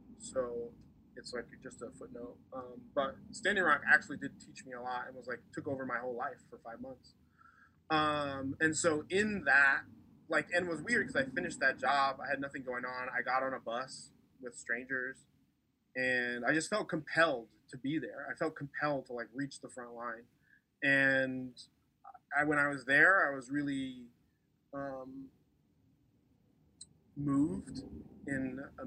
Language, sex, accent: English, male, American